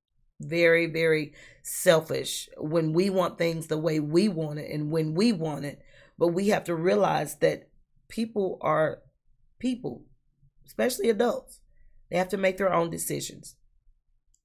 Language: English